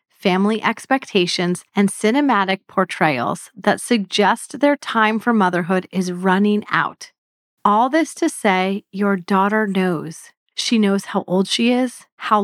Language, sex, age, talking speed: English, female, 30-49, 135 wpm